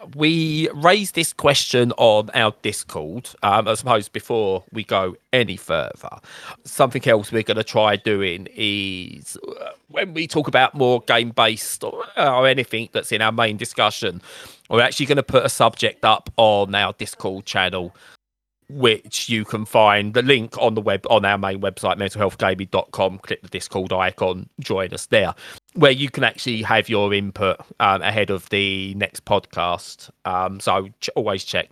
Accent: British